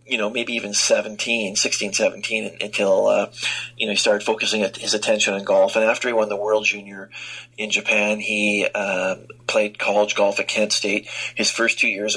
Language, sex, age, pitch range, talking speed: English, male, 40-59, 105-115 Hz, 190 wpm